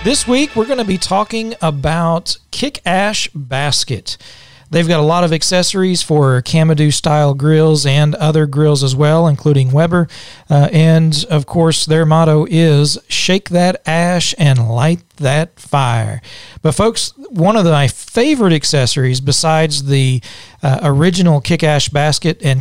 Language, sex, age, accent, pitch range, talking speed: English, male, 40-59, American, 140-170 Hz, 155 wpm